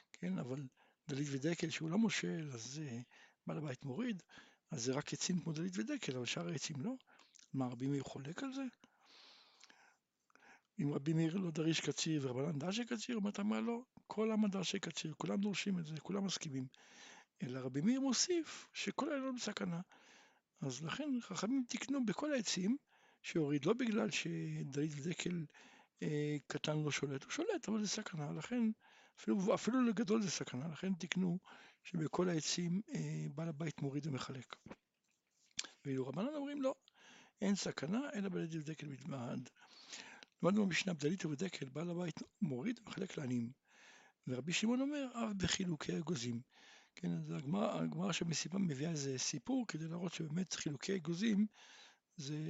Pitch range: 150-215 Hz